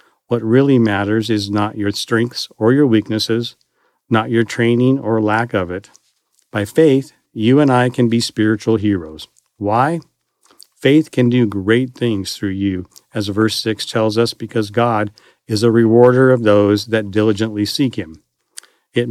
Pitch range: 105-130 Hz